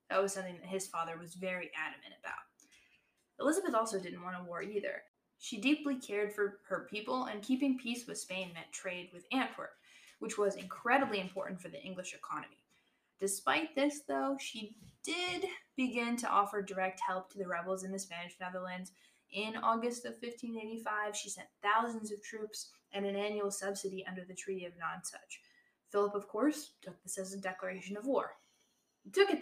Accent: American